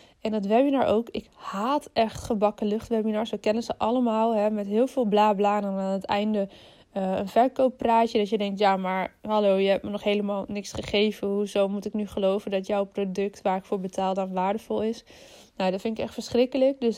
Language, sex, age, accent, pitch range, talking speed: Dutch, female, 20-39, Dutch, 205-240 Hz, 210 wpm